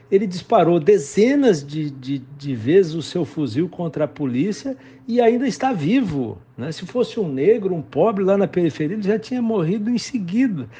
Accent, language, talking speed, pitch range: Brazilian, Portuguese, 180 wpm, 140-210 Hz